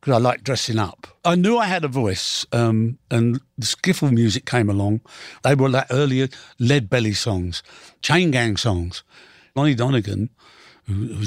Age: 60-79